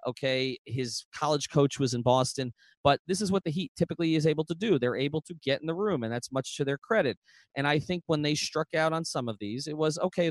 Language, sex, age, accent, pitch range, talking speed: English, male, 30-49, American, 120-160 Hz, 260 wpm